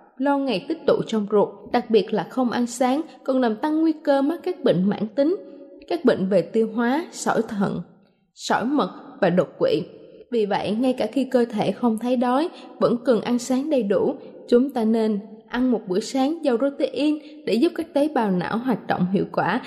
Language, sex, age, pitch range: Thai, female, 20-39, 220-285 Hz